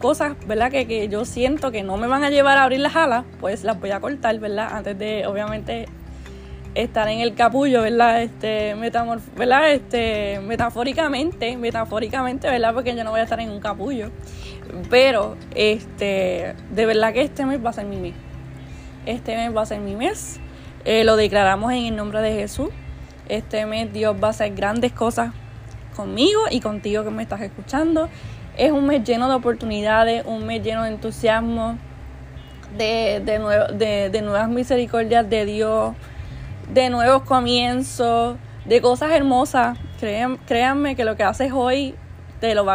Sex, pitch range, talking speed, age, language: female, 210-250 Hz, 175 wpm, 10-29, Spanish